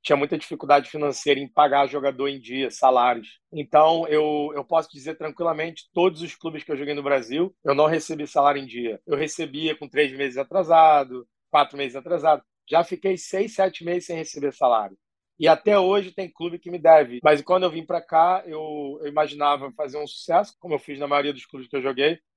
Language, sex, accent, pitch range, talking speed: Portuguese, male, Brazilian, 140-165 Hz, 205 wpm